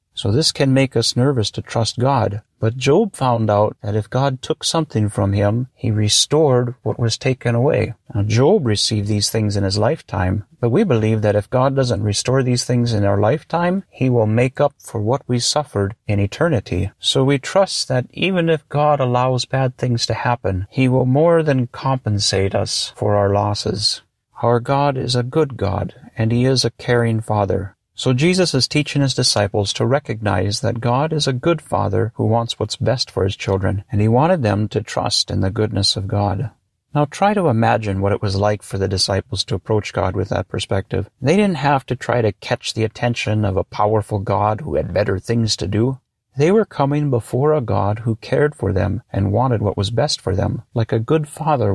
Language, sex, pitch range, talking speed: English, male, 105-130 Hz, 210 wpm